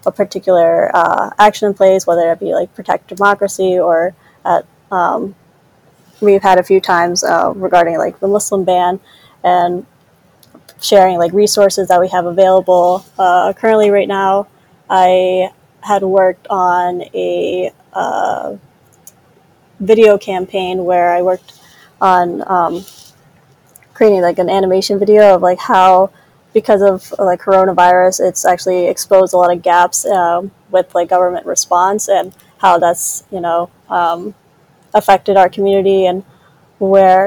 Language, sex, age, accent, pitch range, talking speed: English, female, 20-39, American, 175-195 Hz, 140 wpm